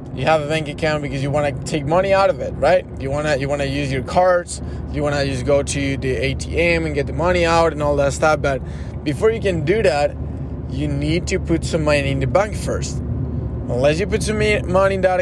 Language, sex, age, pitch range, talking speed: English, male, 20-39, 125-165 Hz, 240 wpm